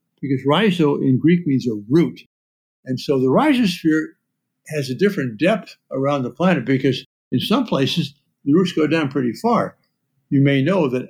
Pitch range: 125-175 Hz